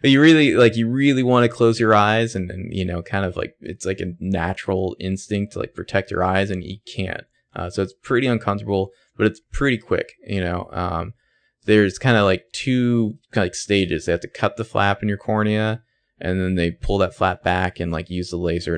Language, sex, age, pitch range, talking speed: English, male, 20-39, 90-105 Hz, 225 wpm